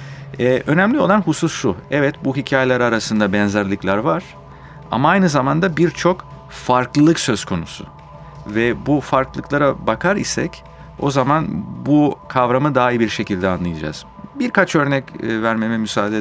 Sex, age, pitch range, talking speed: male, 40-59, 105-155 Hz, 135 wpm